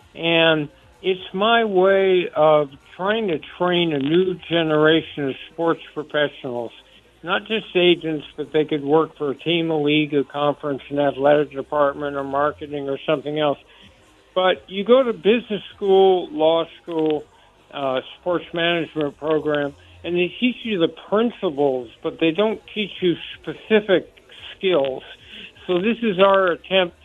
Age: 60-79